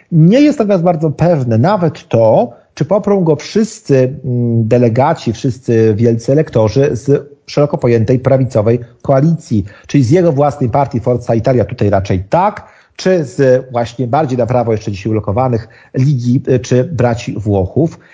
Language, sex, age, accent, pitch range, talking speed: Polish, male, 40-59, native, 120-165 Hz, 140 wpm